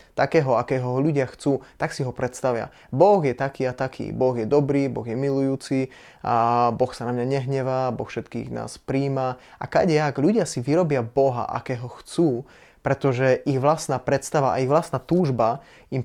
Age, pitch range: 20-39, 120-140 Hz